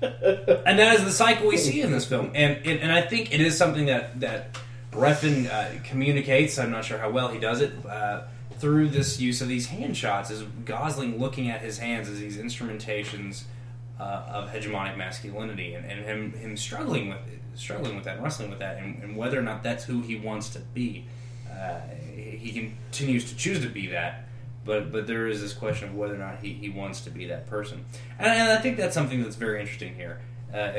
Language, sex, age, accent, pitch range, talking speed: English, male, 20-39, American, 110-130 Hz, 215 wpm